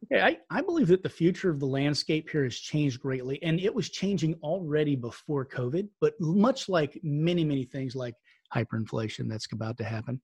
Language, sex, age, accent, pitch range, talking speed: English, male, 30-49, American, 130-160 Hz, 195 wpm